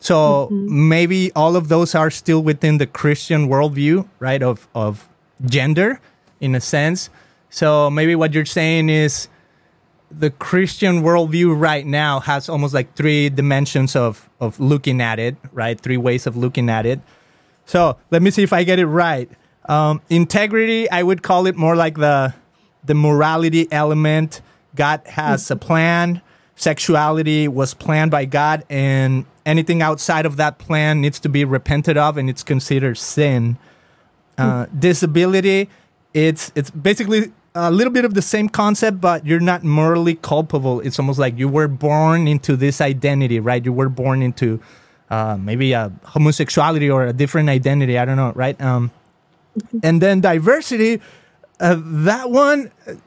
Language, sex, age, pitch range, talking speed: English, male, 30-49, 135-170 Hz, 160 wpm